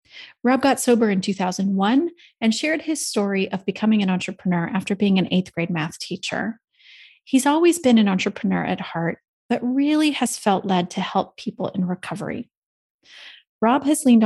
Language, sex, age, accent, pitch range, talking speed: English, female, 30-49, American, 190-250 Hz, 170 wpm